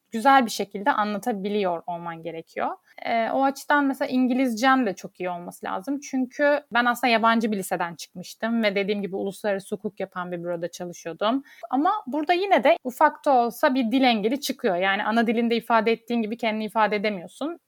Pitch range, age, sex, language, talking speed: 205-270 Hz, 30-49, female, Turkish, 175 wpm